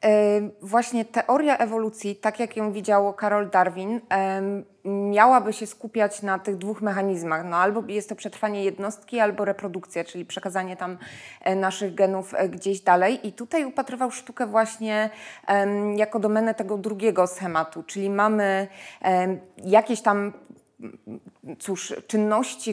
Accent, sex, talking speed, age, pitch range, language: native, female, 120 wpm, 20-39, 190-225 Hz, Polish